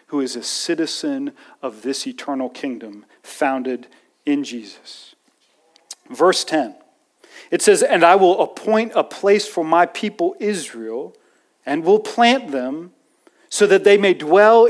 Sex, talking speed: male, 140 wpm